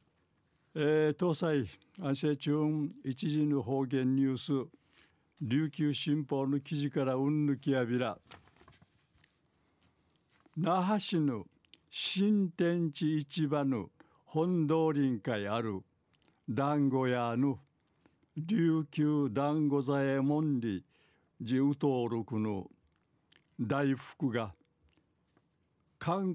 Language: Japanese